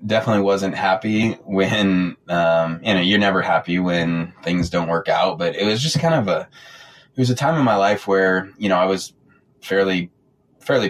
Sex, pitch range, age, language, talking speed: male, 85-100 Hz, 20-39, English, 200 wpm